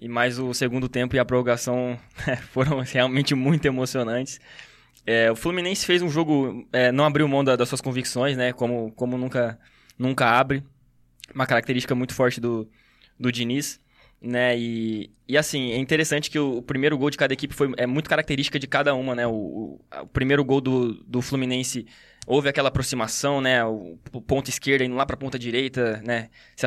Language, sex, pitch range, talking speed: Portuguese, male, 125-145 Hz, 195 wpm